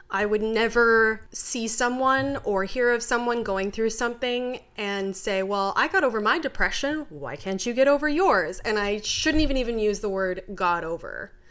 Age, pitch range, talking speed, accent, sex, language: 20-39, 185-235 Hz, 190 wpm, American, female, English